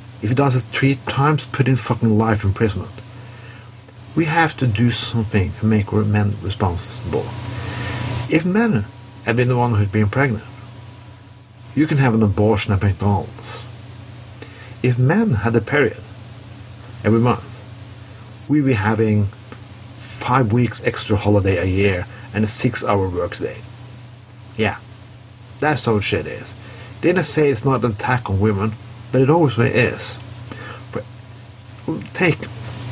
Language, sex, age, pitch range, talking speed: English, male, 50-69, 110-120 Hz, 140 wpm